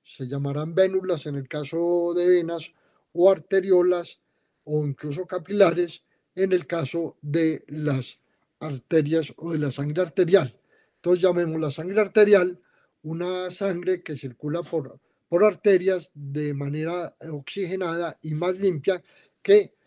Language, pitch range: Spanish, 155-190 Hz